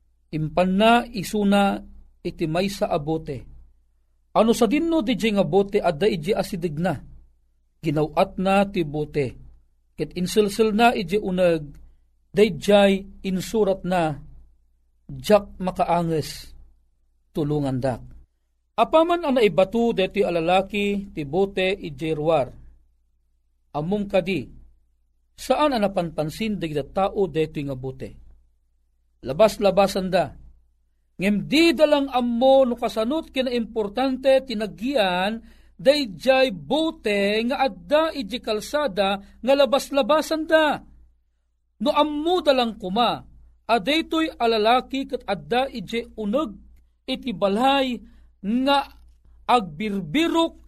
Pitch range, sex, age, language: 145-240 Hz, male, 40-59, Filipino